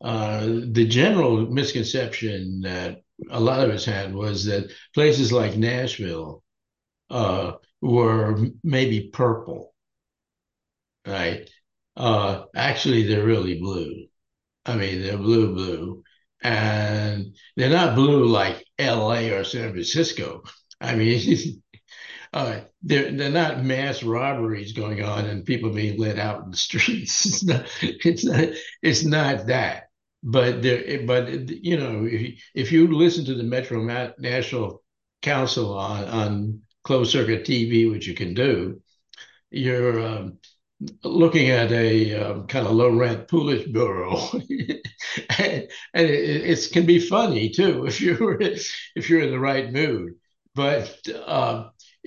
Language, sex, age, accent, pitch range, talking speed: English, male, 60-79, American, 105-140 Hz, 135 wpm